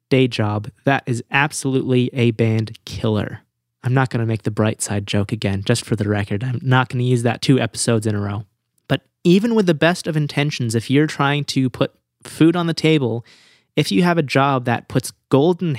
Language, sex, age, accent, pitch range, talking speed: English, male, 20-39, American, 120-155 Hz, 215 wpm